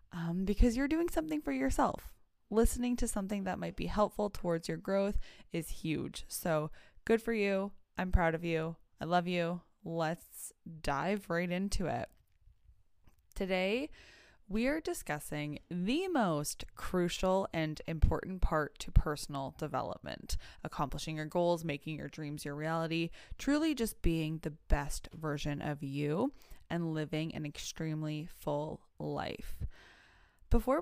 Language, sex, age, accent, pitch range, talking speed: English, female, 20-39, American, 150-195 Hz, 140 wpm